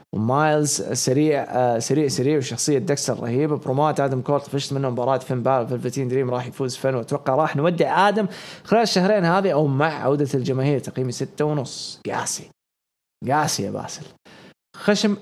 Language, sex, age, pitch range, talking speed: English, male, 20-39, 130-175 Hz, 155 wpm